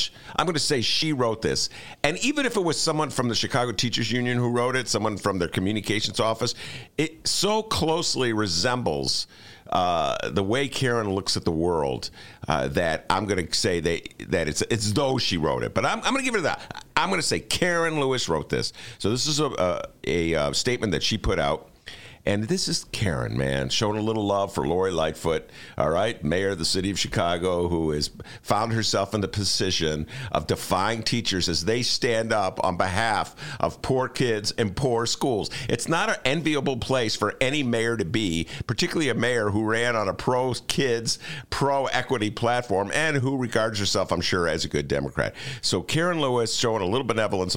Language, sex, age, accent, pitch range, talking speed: English, male, 50-69, American, 95-130 Hz, 200 wpm